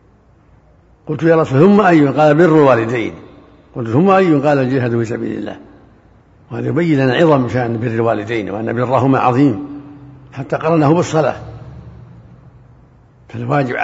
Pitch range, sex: 120-145 Hz, male